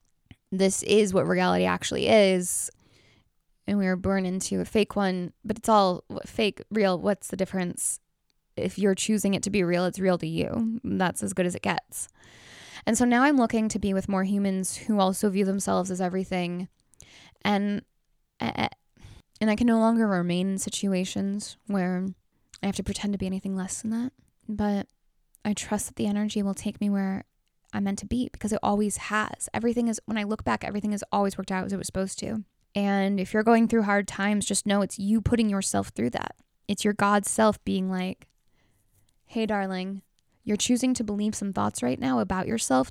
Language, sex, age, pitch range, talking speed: English, female, 10-29, 190-210 Hz, 200 wpm